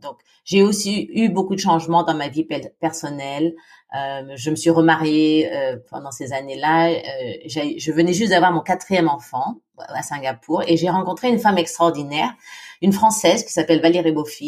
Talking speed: 180 wpm